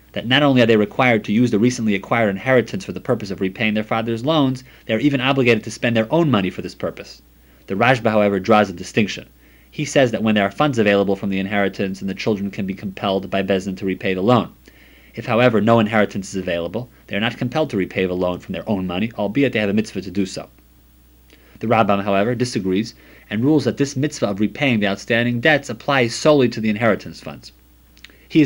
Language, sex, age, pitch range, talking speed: English, male, 30-49, 95-120 Hz, 230 wpm